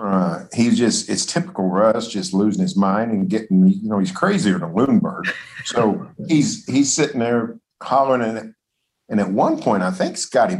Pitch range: 95-115 Hz